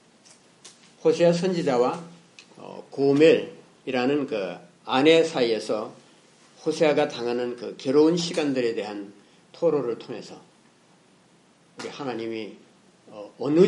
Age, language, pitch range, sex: 50-69, Korean, 135-180 Hz, male